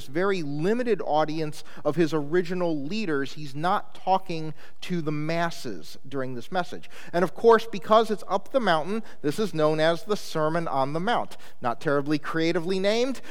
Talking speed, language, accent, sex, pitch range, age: 165 wpm, English, American, male, 140-180 Hz, 40-59